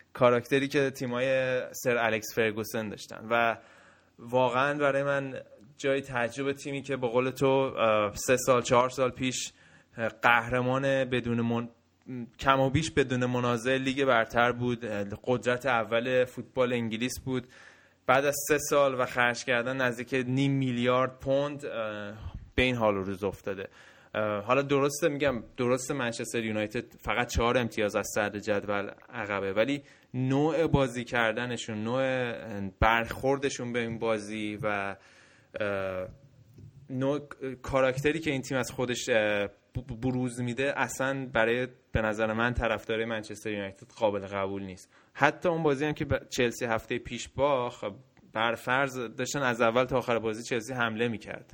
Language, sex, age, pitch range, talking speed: Persian, male, 20-39, 115-135 Hz, 135 wpm